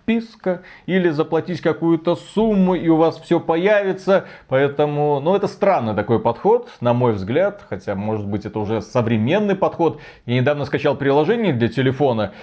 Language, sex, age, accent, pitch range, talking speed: Russian, male, 30-49, native, 120-175 Hz, 155 wpm